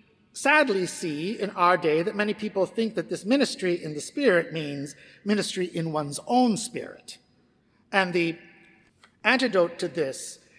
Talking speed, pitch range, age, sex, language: 145 wpm, 170-235 Hz, 50-69, male, English